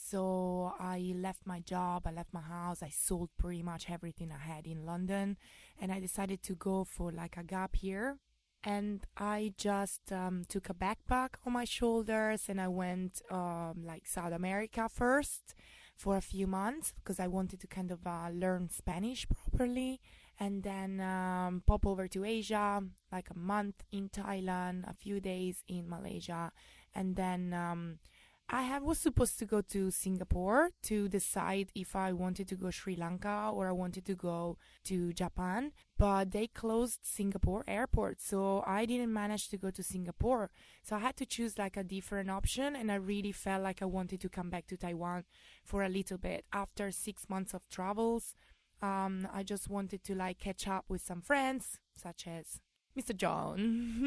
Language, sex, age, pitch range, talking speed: English, female, 20-39, 180-210 Hz, 180 wpm